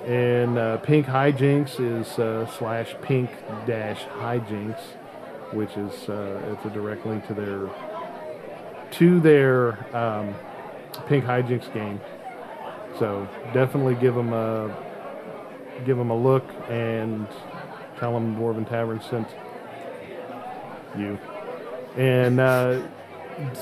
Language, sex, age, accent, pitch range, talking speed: English, male, 40-59, American, 110-135 Hz, 110 wpm